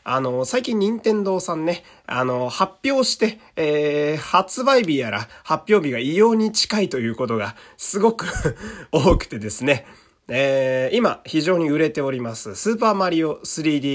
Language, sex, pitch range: Japanese, male, 135-215 Hz